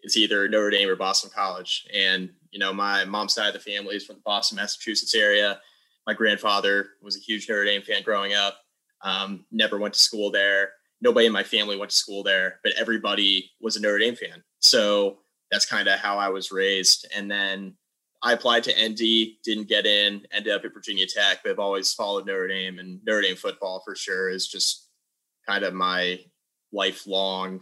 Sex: male